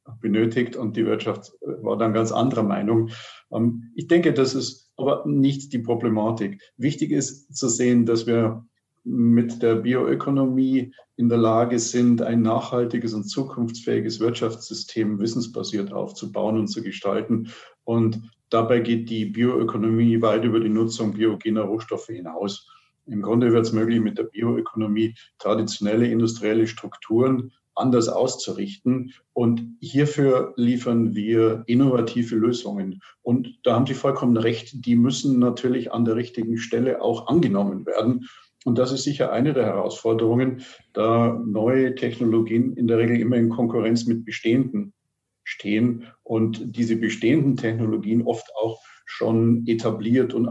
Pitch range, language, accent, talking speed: 110-125 Hz, German, German, 135 wpm